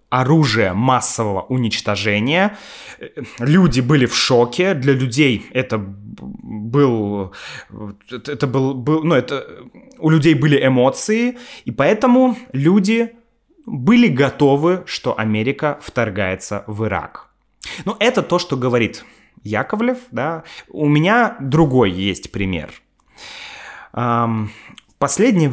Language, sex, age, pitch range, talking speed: Russian, male, 20-39, 110-165 Hz, 95 wpm